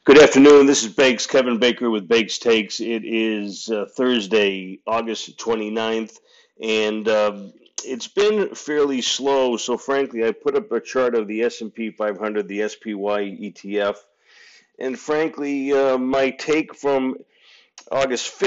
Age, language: 40-59, English